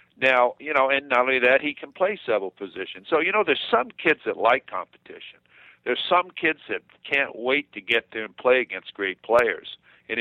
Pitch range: 120-170 Hz